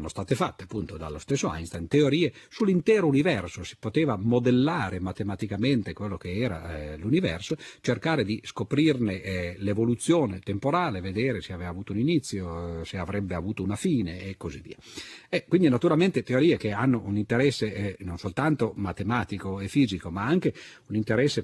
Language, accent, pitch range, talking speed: Italian, native, 95-135 Hz, 155 wpm